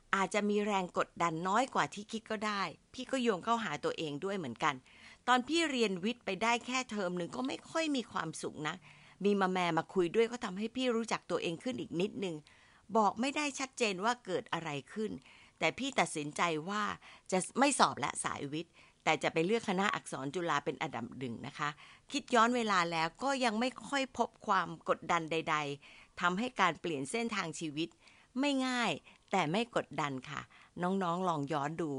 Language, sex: Thai, female